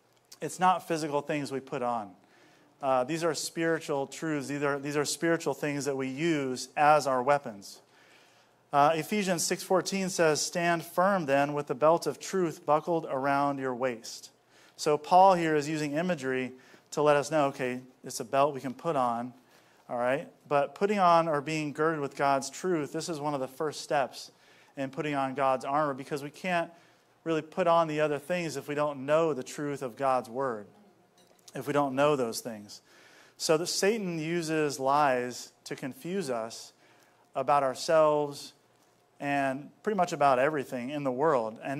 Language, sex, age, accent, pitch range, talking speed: English, male, 40-59, American, 135-165 Hz, 175 wpm